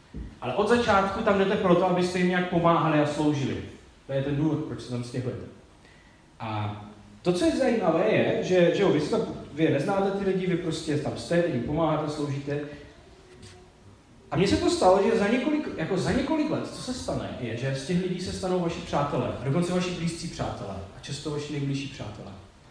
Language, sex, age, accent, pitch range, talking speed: Czech, male, 30-49, native, 125-170 Hz, 200 wpm